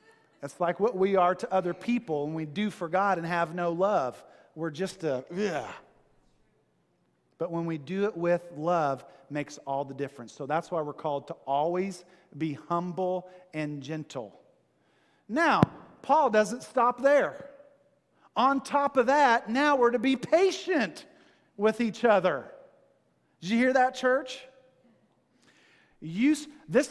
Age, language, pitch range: 40-59, English, 160-240 Hz